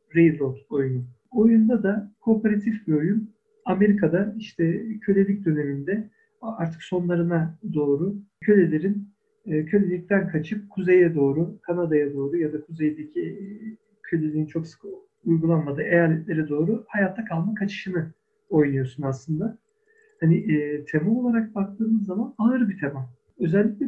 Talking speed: 110 wpm